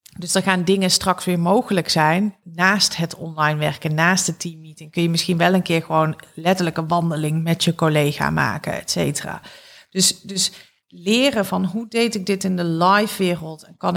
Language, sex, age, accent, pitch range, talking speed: Dutch, female, 40-59, Dutch, 165-195 Hz, 195 wpm